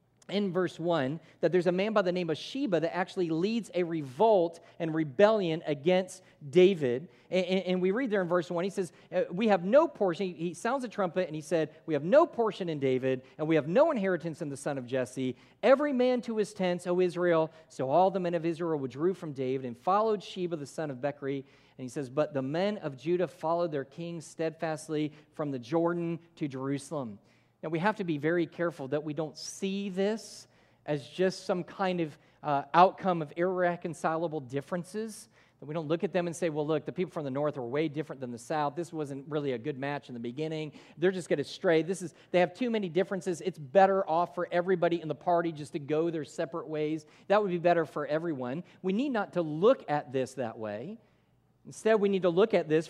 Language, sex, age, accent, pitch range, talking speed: English, male, 40-59, American, 150-185 Hz, 225 wpm